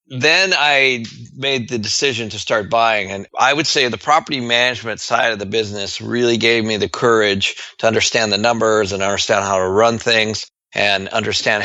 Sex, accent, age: male, American, 40-59